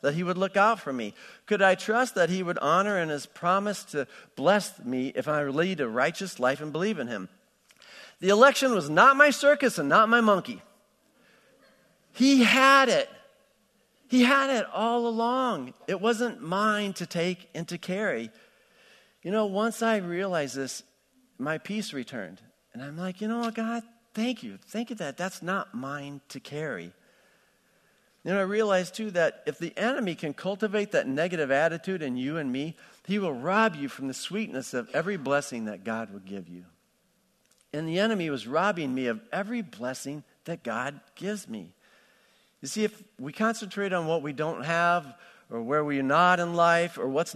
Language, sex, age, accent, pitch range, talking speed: English, male, 50-69, American, 145-215 Hz, 185 wpm